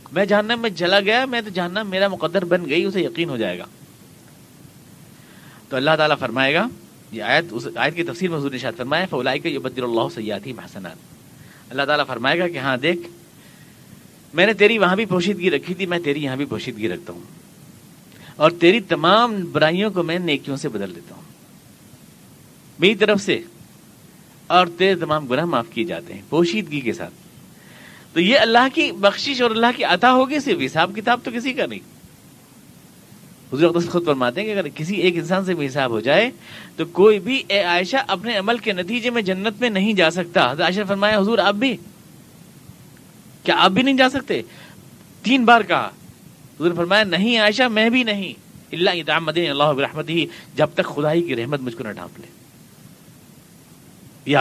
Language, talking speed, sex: Urdu, 180 wpm, male